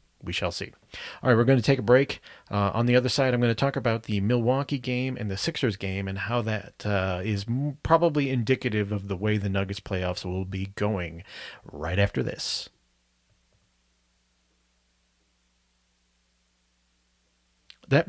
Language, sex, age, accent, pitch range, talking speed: English, male, 30-49, American, 95-120 Hz, 160 wpm